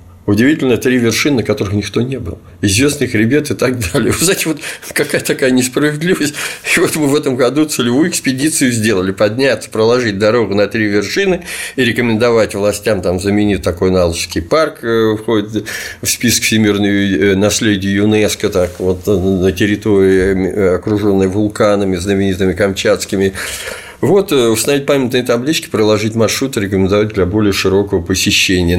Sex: male